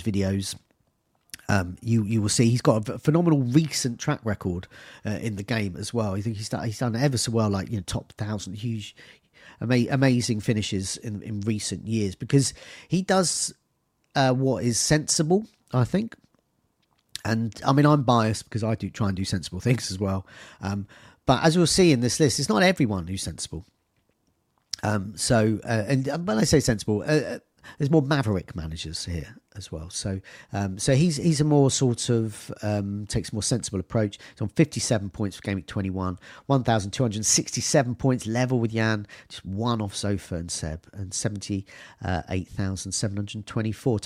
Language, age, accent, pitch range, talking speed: English, 40-59, British, 100-135 Hz, 175 wpm